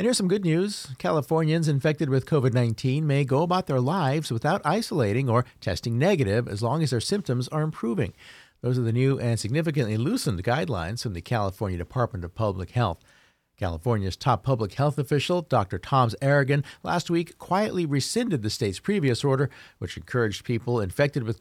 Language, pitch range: English, 110-145 Hz